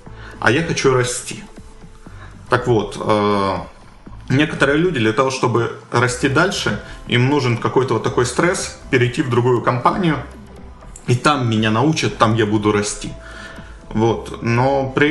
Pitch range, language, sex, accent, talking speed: 110-145 Hz, Ukrainian, male, native, 130 wpm